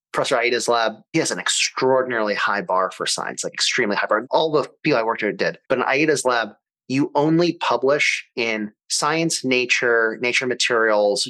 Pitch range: 110-130 Hz